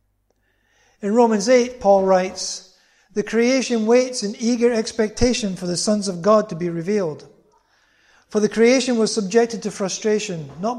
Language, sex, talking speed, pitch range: English, male, 150 wpm, 180-225 Hz